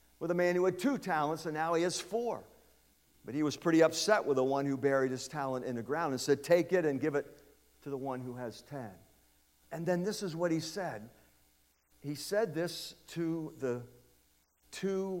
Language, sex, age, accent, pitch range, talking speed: English, male, 50-69, American, 125-175 Hz, 210 wpm